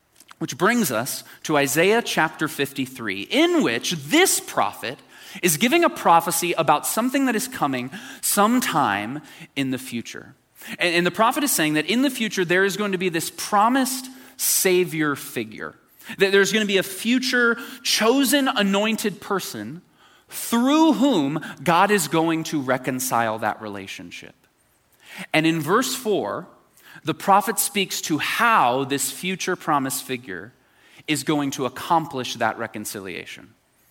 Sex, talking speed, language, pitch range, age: male, 140 wpm, English, 150-235 Hz, 20-39